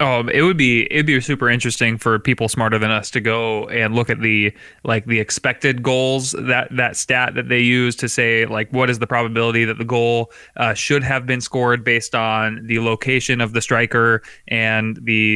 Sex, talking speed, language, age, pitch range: male, 205 wpm, English, 20-39, 115-130 Hz